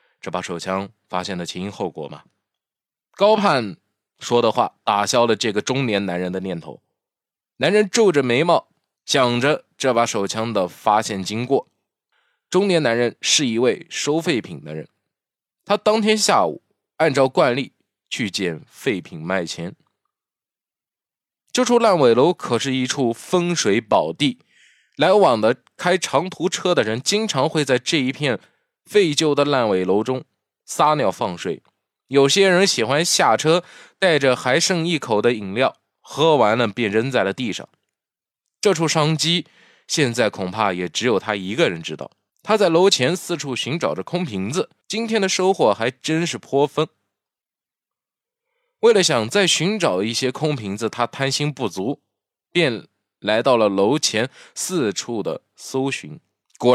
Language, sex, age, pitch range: Chinese, male, 20-39, 110-180 Hz